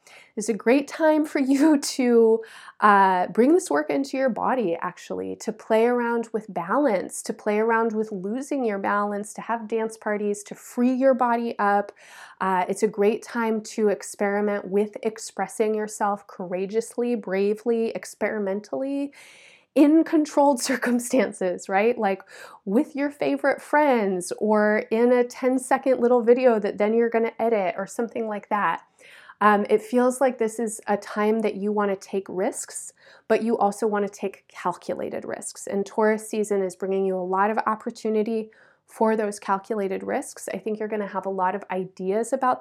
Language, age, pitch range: English, 20-39, 200-245 Hz